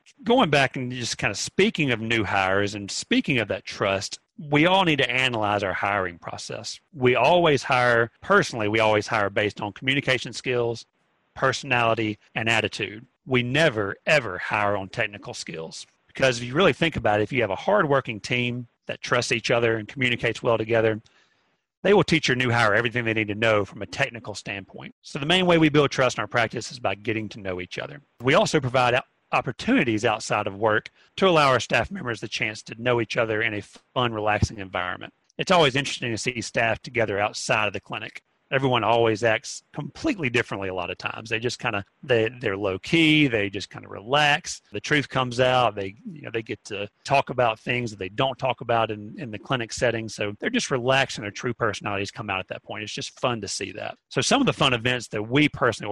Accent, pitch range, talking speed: American, 105-135 Hz, 220 wpm